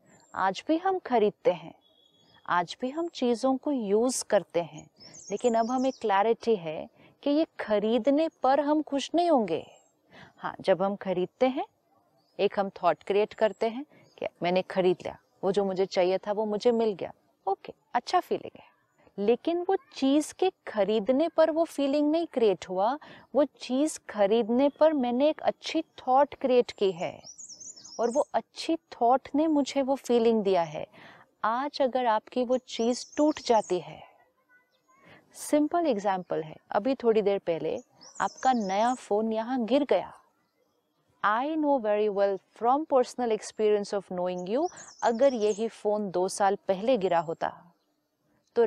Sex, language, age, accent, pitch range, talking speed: female, Hindi, 30-49, native, 200-280 Hz, 155 wpm